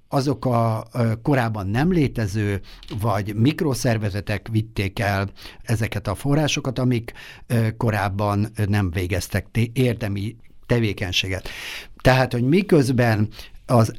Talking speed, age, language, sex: 95 wpm, 60-79, Hungarian, male